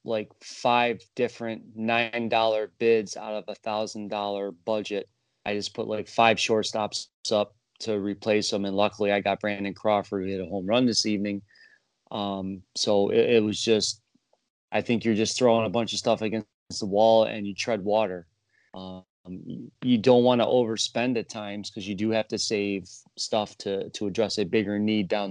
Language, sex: English, male